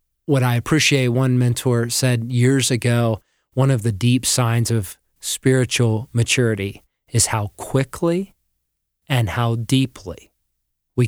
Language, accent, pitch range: English, American, 115-135 Hz